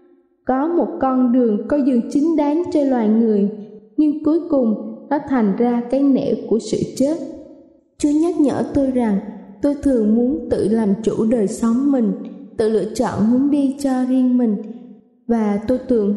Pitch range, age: 230-275 Hz, 20-39